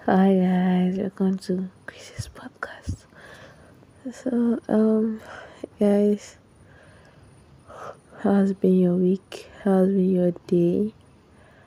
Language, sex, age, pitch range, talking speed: English, female, 20-39, 180-205 Hz, 85 wpm